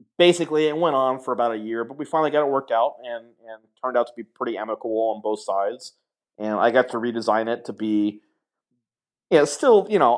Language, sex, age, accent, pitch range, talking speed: English, male, 30-49, American, 110-135 Hz, 225 wpm